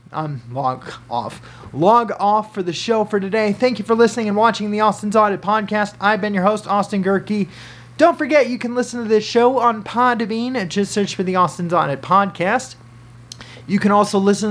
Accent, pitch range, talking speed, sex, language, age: American, 155-240 Hz, 200 wpm, male, English, 30-49